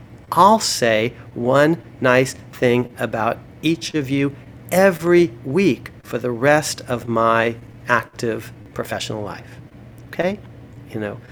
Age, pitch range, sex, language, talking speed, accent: 40-59, 120-150 Hz, male, English, 115 wpm, American